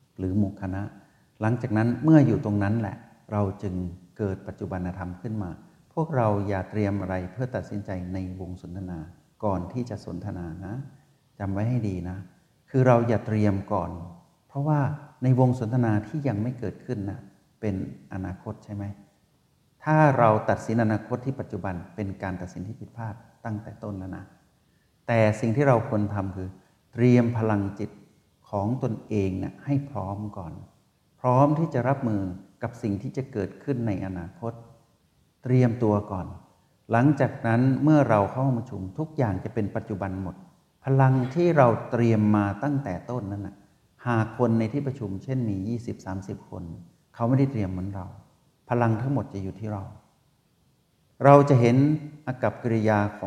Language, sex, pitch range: Thai, male, 95-125 Hz